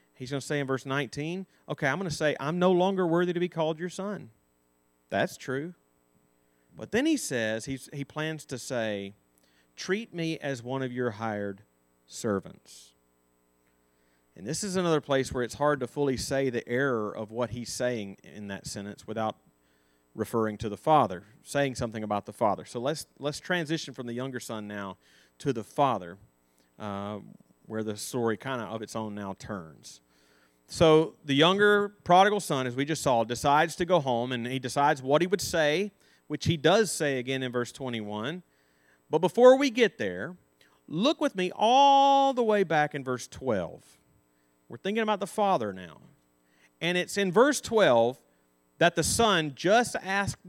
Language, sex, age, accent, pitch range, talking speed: English, male, 30-49, American, 95-160 Hz, 180 wpm